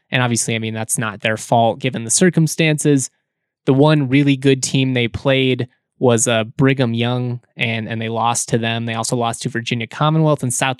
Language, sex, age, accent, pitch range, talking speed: English, male, 20-39, American, 120-145 Hz, 200 wpm